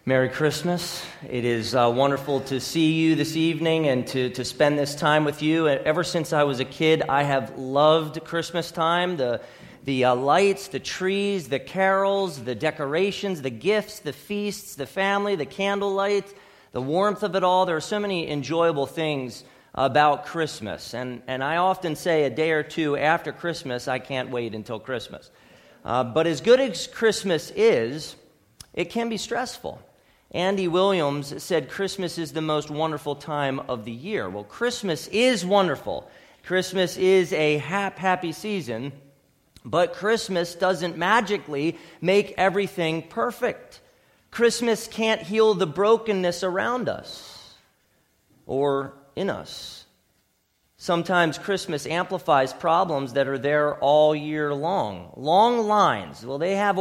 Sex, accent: male, American